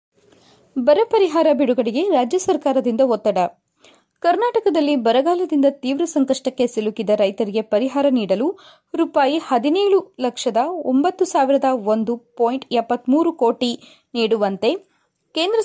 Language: Kannada